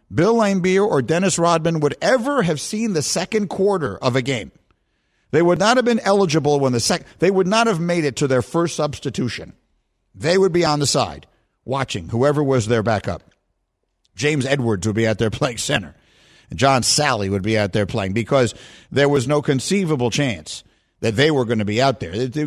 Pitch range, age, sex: 115-150 Hz, 50-69, male